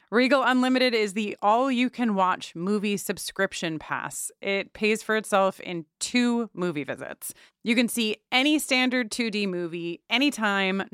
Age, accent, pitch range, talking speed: 30-49, American, 185-250 Hz, 130 wpm